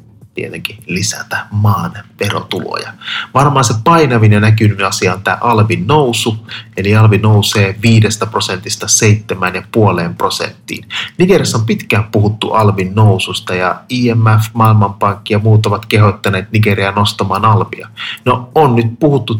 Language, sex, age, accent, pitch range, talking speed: Finnish, male, 30-49, native, 105-115 Hz, 125 wpm